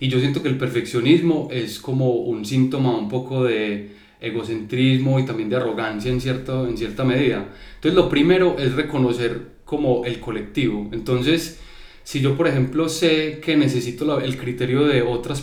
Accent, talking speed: Colombian, 165 wpm